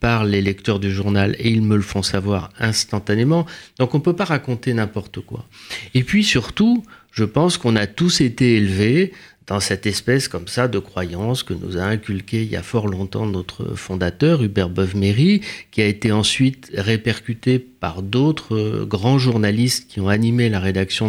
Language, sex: French, male